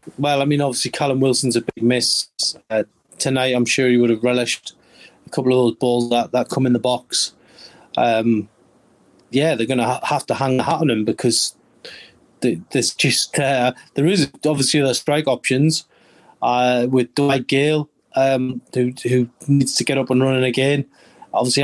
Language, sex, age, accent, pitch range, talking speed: English, male, 30-49, British, 130-150 Hz, 185 wpm